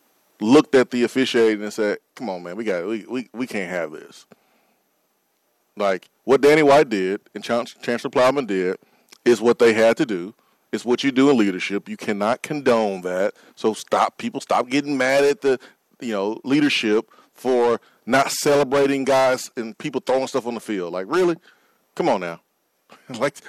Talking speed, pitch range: 180 wpm, 110-145 Hz